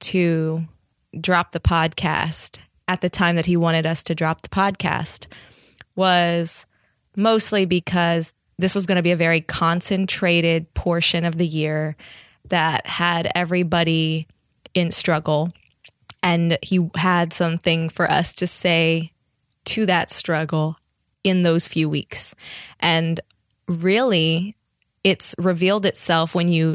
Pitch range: 165-185 Hz